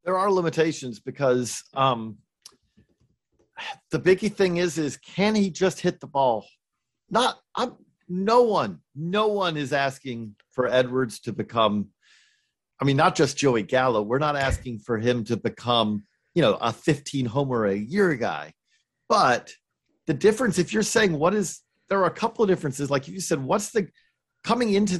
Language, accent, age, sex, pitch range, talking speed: English, American, 40-59, male, 130-185 Hz, 165 wpm